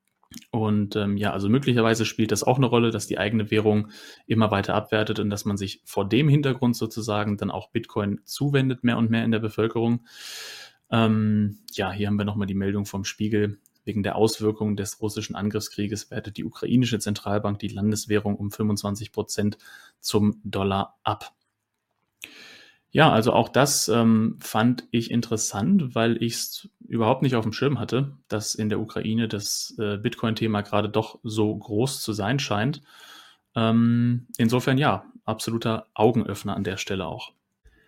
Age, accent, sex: 20-39, German, male